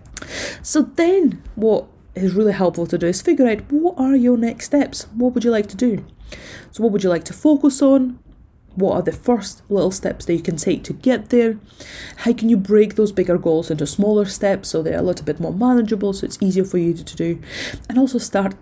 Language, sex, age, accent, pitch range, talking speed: English, female, 30-49, British, 165-240 Hz, 225 wpm